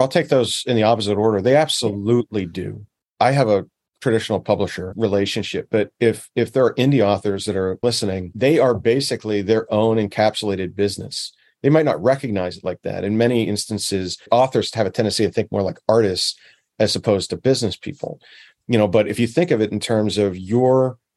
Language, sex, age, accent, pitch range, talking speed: English, male, 40-59, American, 100-125 Hz, 195 wpm